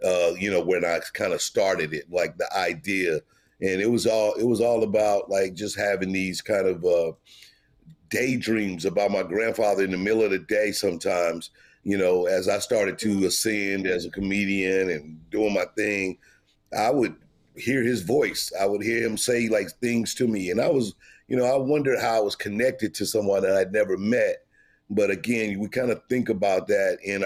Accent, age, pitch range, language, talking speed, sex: American, 50-69, 100-130 Hz, English, 205 wpm, male